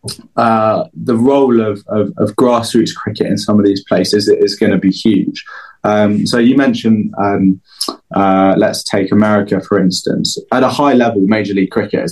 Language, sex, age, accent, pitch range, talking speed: English, male, 20-39, British, 95-110 Hz, 180 wpm